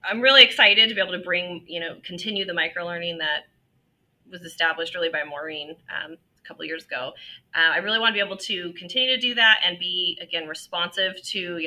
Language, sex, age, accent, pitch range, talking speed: English, female, 30-49, American, 165-195 Hz, 220 wpm